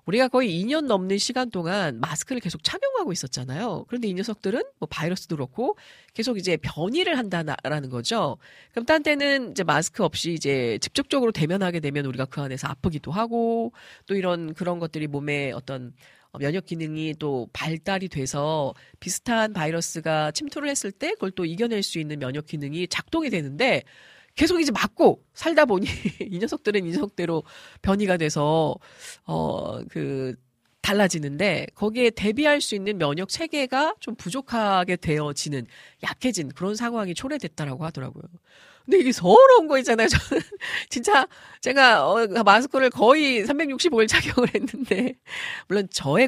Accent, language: native, Korean